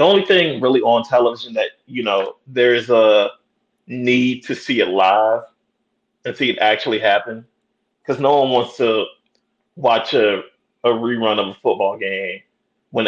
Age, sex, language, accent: 30-49, male, English, American